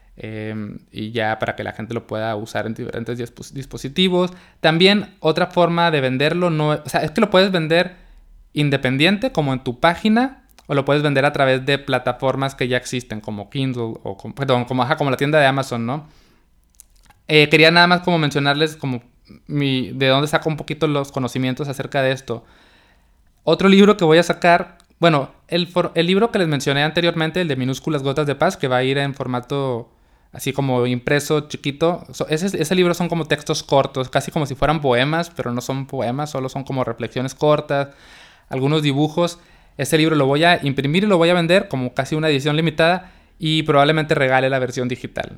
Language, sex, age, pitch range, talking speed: Spanish, male, 20-39, 125-160 Hz, 200 wpm